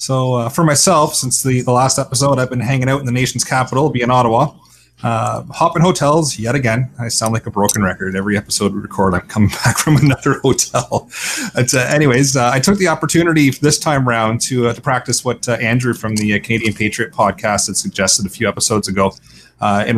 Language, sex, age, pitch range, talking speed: English, male, 30-49, 100-125 Hz, 215 wpm